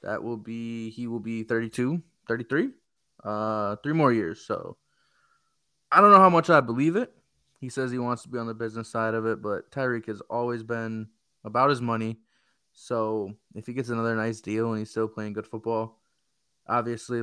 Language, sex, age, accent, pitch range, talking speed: English, male, 20-39, American, 110-125 Hz, 190 wpm